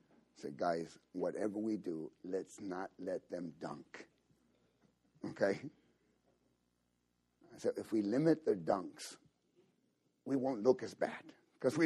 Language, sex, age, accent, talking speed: English, male, 60-79, American, 130 wpm